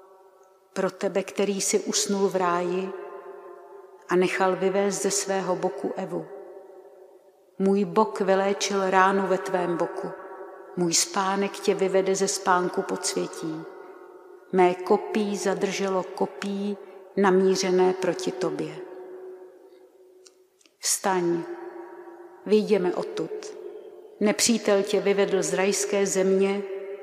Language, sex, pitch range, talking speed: Czech, female, 185-210 Hz, 100 wpm